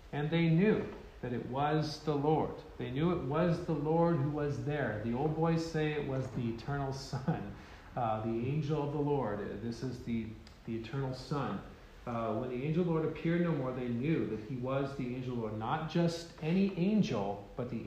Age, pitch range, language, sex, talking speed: 40-59, 130-160 Hz, English, male, 215 wpm